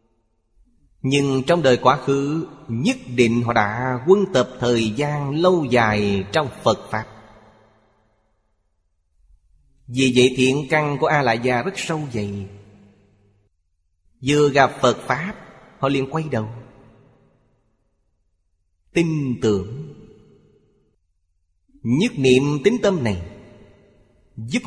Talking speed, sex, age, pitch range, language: 110 wpm, male, 30-49, 100-135 Hz, Vietnamese